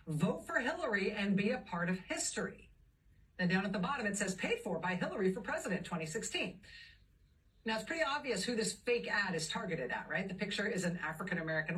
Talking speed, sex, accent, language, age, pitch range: 210 wpm, female, American, English, 50-69, 175-225 Hz